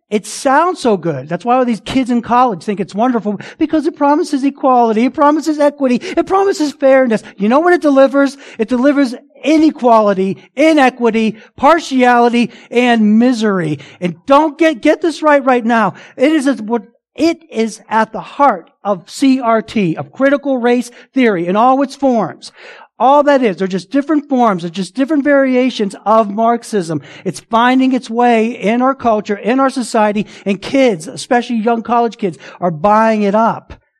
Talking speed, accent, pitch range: 170 wpm, American, 210-275 Hz